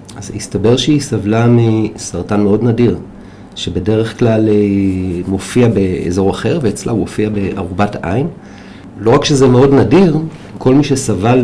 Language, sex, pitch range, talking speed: Hebrew, male, 100-125 Hz, 130 wpm